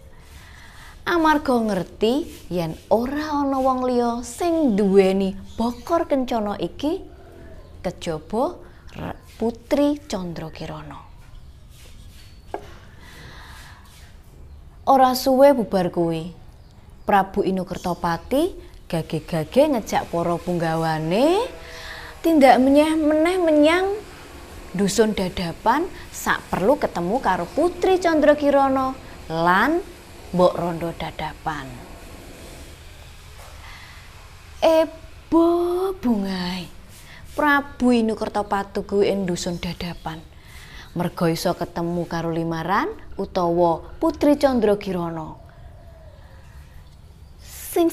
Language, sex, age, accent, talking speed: Indonesian, female, 20-39, native, 70 wpm